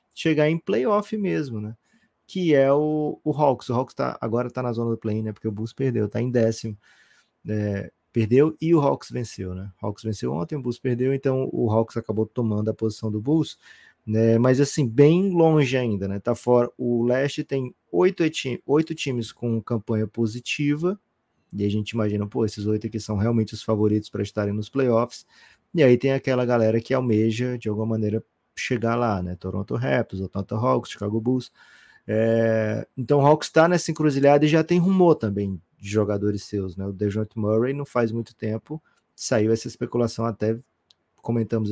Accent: Brazilian